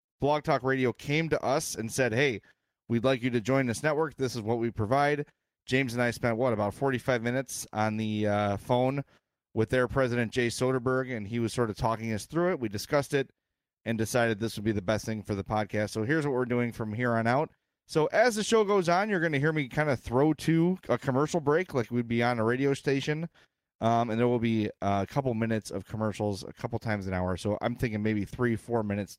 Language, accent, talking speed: English, American, 240 wpm